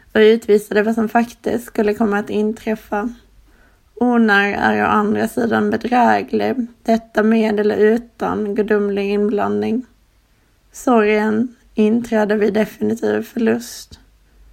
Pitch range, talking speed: 215-230 Hz, 110 wpm